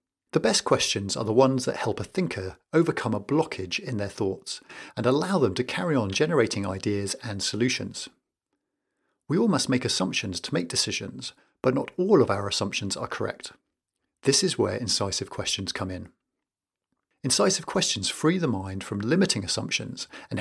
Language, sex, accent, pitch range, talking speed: English, male, British, 100-135 Hz, 170 wpm